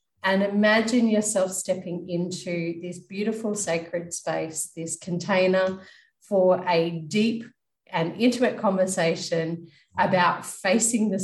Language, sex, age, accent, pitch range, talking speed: English, female, 30-49, Australian, 165-205 Hz, 105 wpm